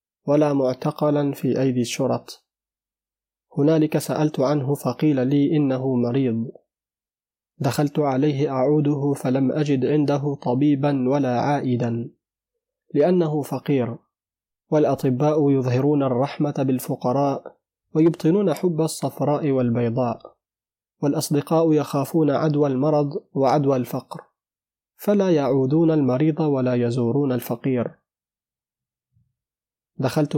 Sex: male